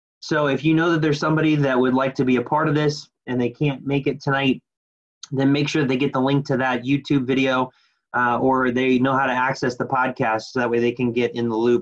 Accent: American